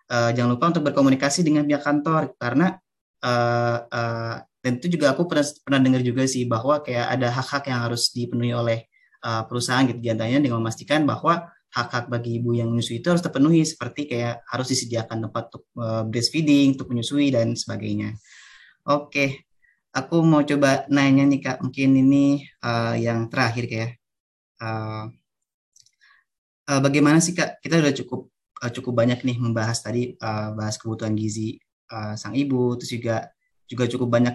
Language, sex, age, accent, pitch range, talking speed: Indonesian, male, 20-39, native, 115-140 Hz, 160 wpm